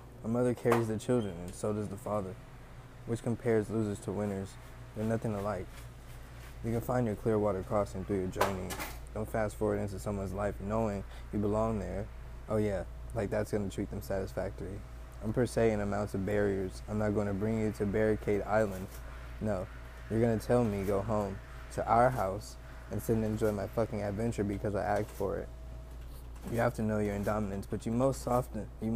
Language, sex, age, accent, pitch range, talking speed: English, male, 20-39, American, 100-110 Hz, 200 wpm